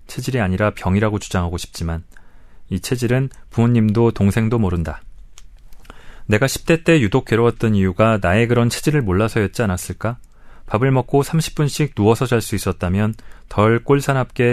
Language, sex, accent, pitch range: Korean, male, native, 100-125 Hz